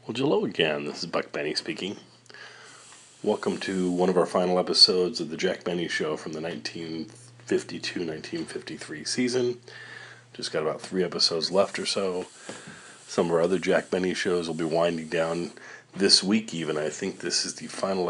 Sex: male